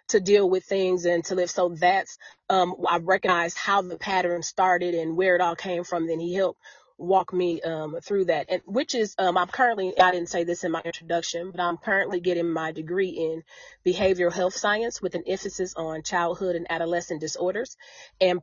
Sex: female